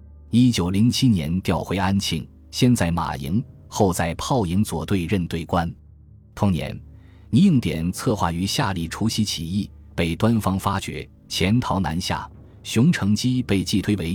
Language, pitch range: Chinese, 85-110 Hz